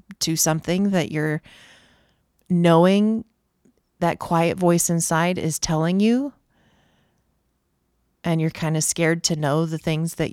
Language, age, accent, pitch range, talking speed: English, 30-49, American, 160-215 Hz, 130 wpm